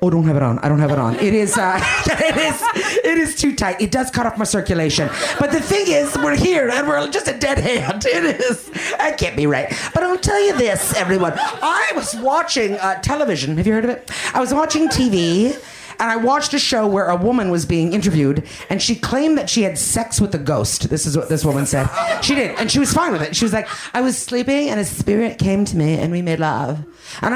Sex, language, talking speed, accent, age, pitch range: female, English, 250 wpm, American, 40-59, 160-270 Hz